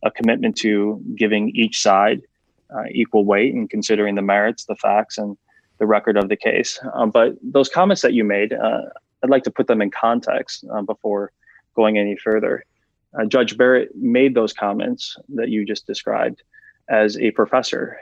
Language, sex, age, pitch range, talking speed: English, male, 20-39, 105-120 Hz, 180 wpm